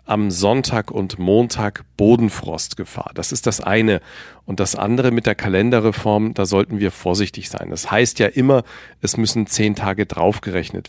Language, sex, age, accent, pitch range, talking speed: German, male, 40-59, German, 100-125 Hz, 160 wpm